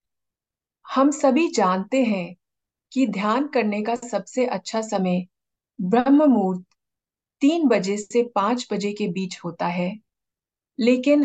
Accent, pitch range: native, 190-255 Hz